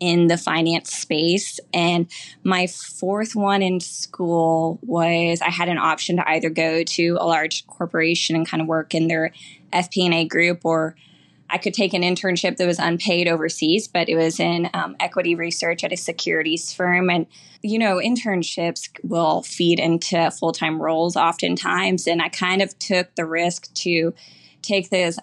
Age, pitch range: 20-39, 165-180 Hz